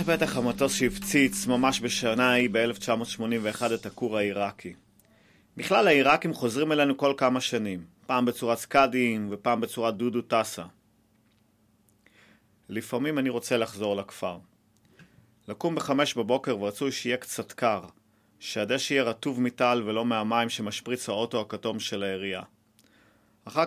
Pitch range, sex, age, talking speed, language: 110-135 Hz, male, 30-49, 120 wpm, Hebrew